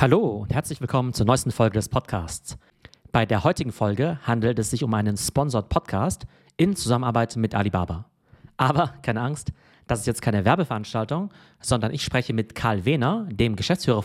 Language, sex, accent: German, male, German